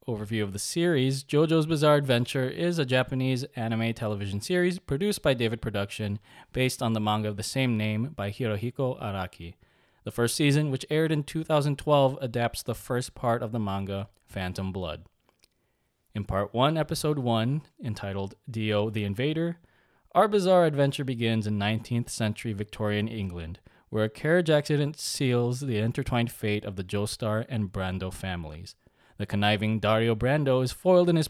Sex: male